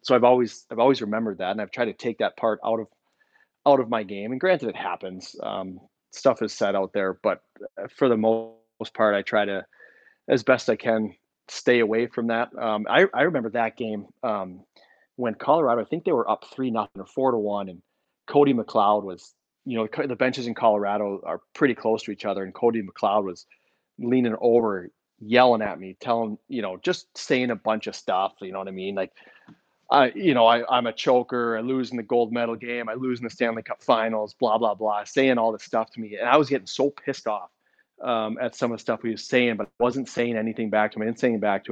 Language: English